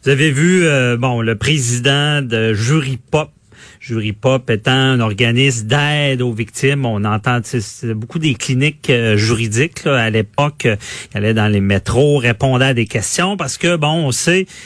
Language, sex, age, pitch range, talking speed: French, male, 40-59, 110-140 Hz, 185 wpm